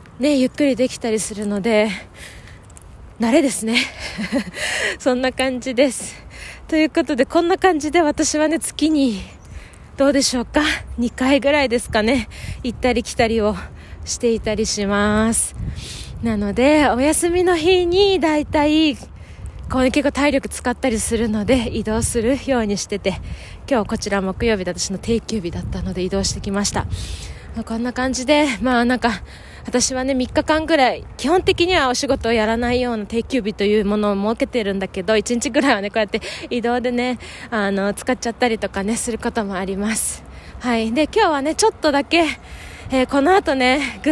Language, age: Japanese, 20-39